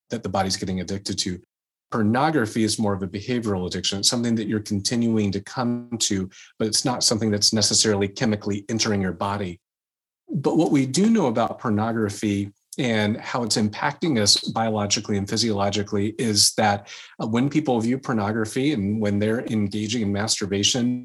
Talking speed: 165 wpm